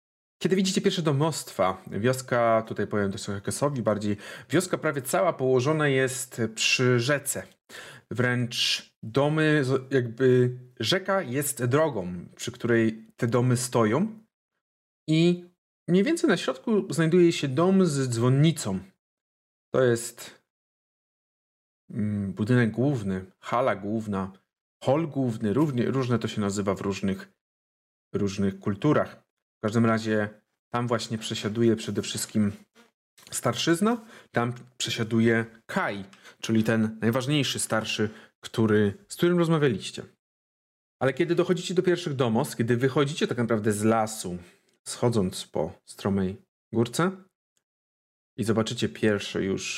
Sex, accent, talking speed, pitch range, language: male, native, 115 wpm, 110-160 Hz, Polish